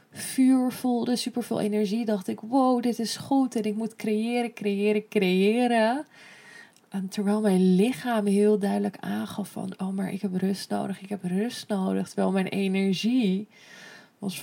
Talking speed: 155 wpm